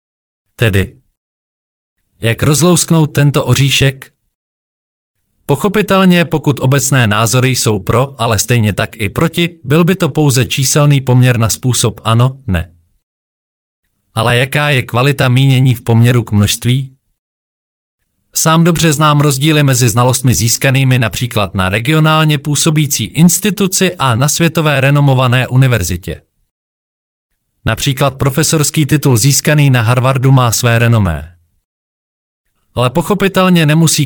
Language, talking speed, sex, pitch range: Czech, 115 wpm, male, 110-150 Hz